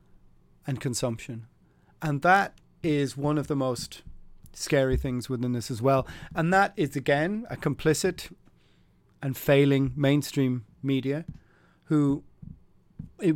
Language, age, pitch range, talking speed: English, 40-59, 130-150 Hz, 120 wpm